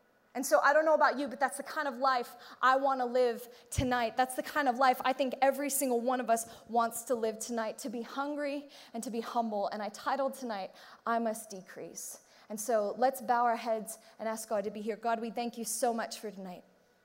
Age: 20-39